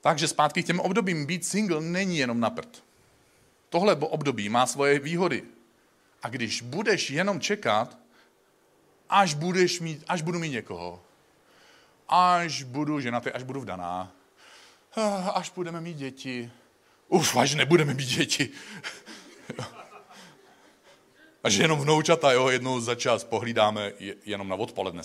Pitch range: 110-165 Hz